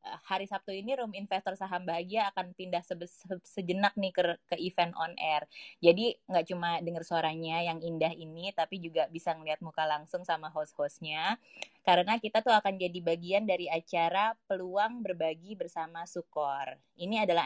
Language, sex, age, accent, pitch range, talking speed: Indonesian, female, 20-39, native, 165-200 Hz, 165 wpm